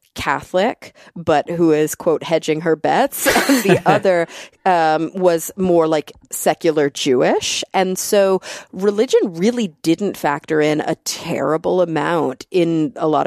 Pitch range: 155-190 Hz